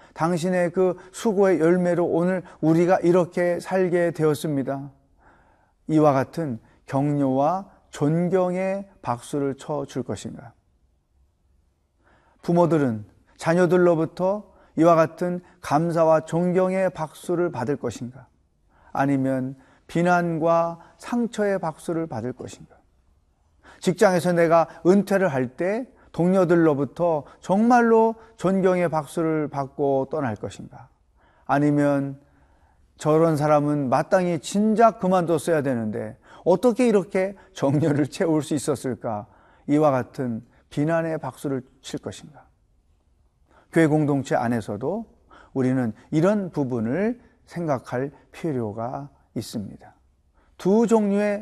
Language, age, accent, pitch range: Korean, 40-59, native, 130-180 Hz